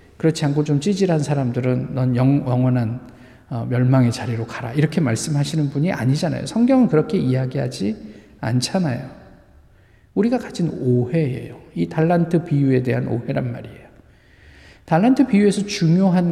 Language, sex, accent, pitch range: Korean, male, native, 125-205 Hz